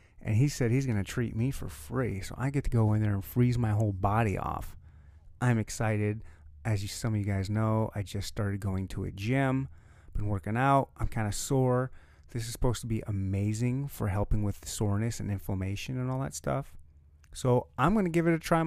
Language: English